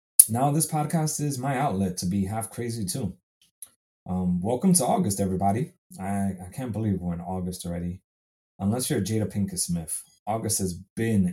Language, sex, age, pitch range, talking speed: English, male, 20-39, 90-115 Hz, 170 wpm